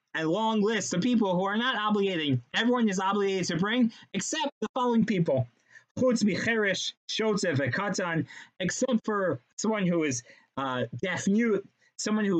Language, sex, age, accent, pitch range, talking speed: English, male, 30-49, American, 150-215 Hz, 155 wpm